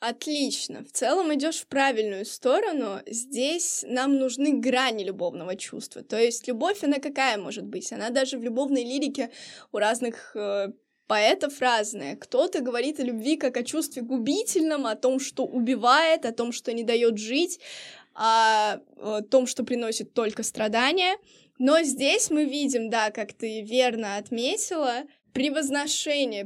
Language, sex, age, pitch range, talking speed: Russian, female, 20-39, 225-285 Hz, 145 wpm